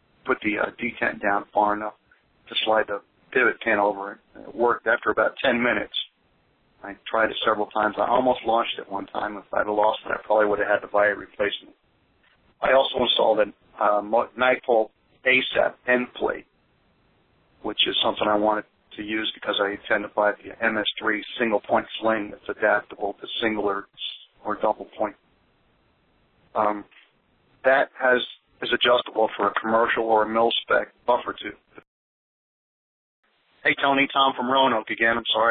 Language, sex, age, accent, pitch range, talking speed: English, male, 40-59, American, 105-115 Hz, 165 wpm